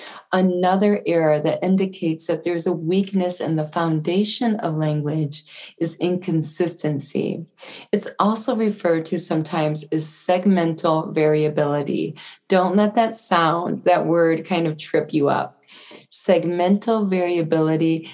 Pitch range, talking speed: 160-190 Hz, 120 wpm